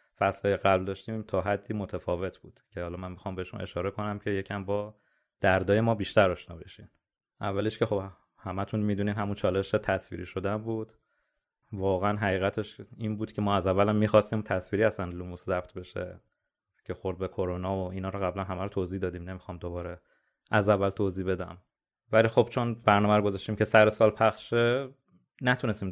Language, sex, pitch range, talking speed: Persian, male, 95-105 Hz, 170 wpm